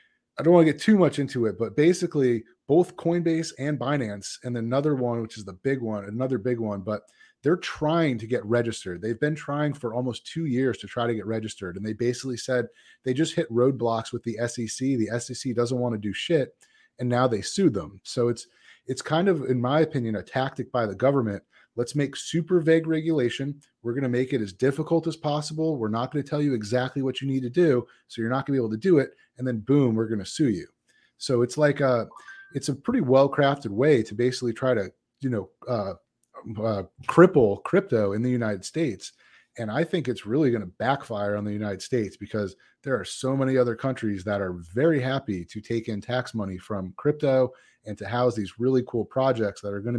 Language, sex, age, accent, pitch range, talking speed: English, male, 30-49, American, 110-140 Hz, 225 wpm